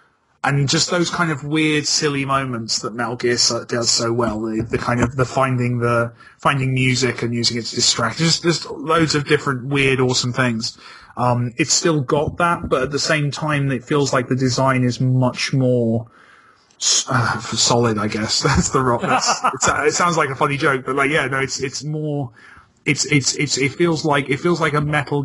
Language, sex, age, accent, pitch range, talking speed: English, male, 30-49, British, 120-145 Hz, 200 wpm